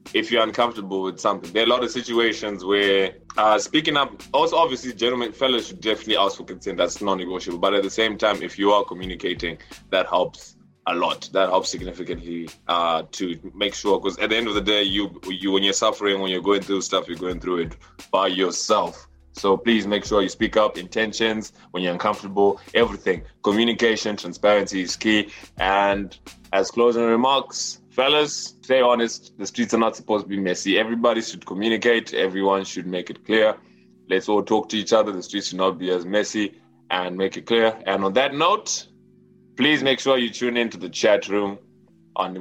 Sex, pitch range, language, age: male, 95-115 Hz, English, 20-39